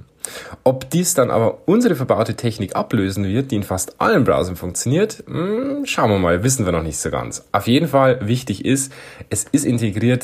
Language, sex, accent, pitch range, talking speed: German, male, German, 100-135 Hz, 190 wpm